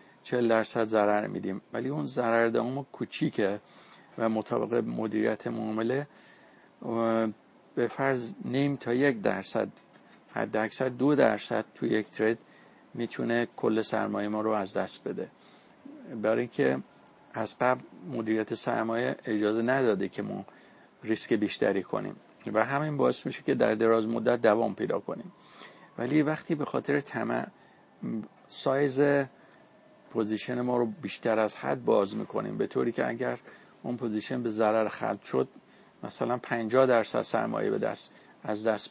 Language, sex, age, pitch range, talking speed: Persian, male, 50-69, 110-130 Hz, 135 wpm